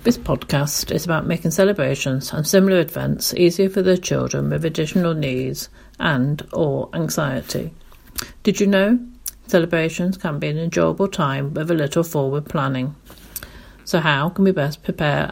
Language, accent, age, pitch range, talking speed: English, British, 50-69, 145-185 Hz, 155 wpm